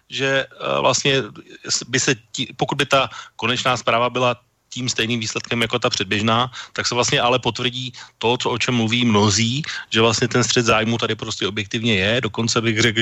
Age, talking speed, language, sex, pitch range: 30-49, 180 wpm, Slovak, male, 105-130 Hz